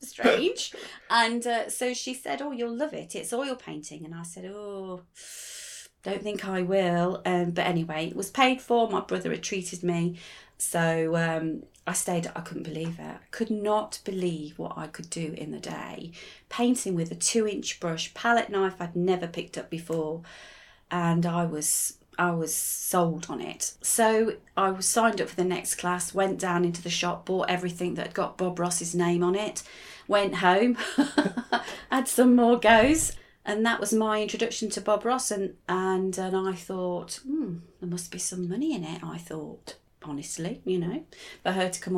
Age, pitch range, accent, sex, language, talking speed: 30-49, 175-220 Hz, British, female, English, 190 wpm